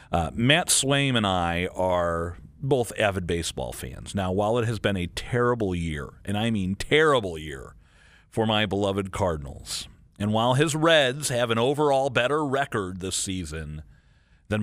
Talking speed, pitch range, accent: 160 wpm, 90-140 Hz, American